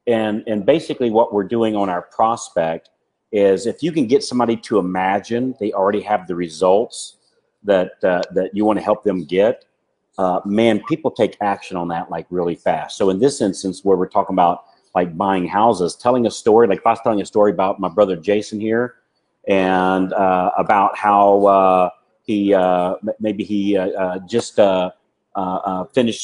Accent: American